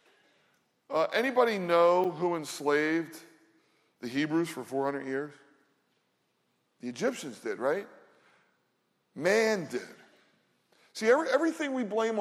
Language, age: English, 40-59